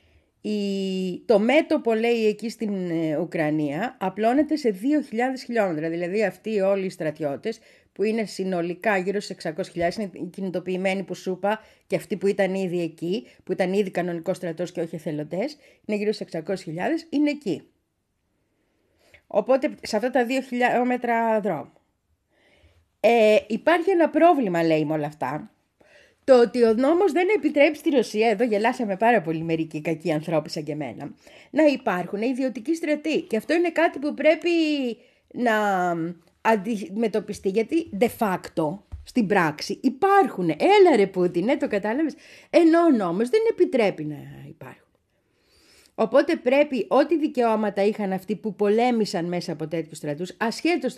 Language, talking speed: Greek, 145 wpm